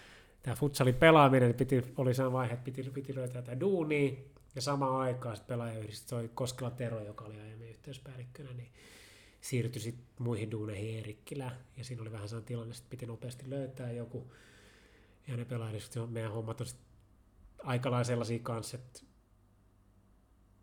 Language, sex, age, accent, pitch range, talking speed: Finnish, male, 30-49, native, 110-130 Hz, 150 wpm